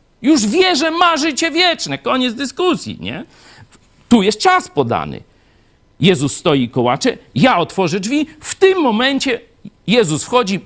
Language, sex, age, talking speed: Polish, male, 50-69, 140 wpm